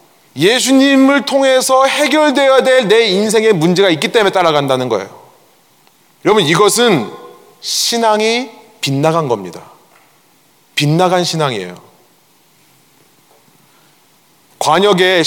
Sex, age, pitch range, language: male, 30-49, 185-280 Hz, Korean